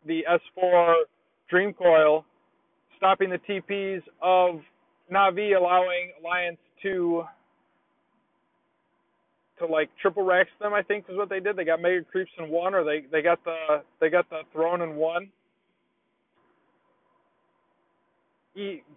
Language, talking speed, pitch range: English, 130 wpm, 175-245 Hz